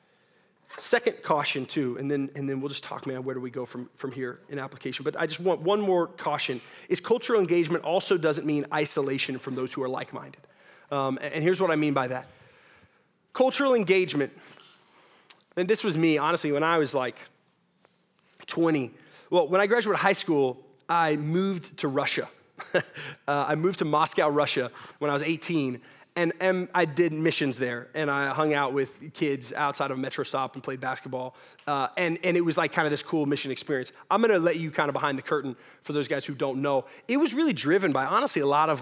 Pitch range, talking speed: 140-185 Hz, 210 wpm